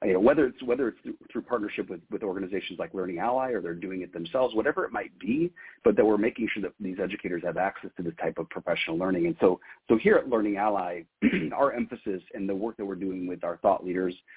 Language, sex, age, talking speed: English, male, 40-59, 245 wpm